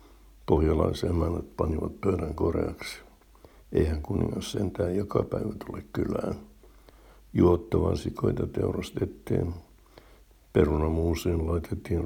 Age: 60-79